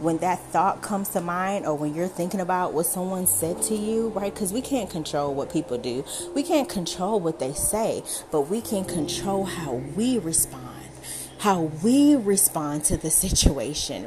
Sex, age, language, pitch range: female, 30-49, English, 155-200 Hz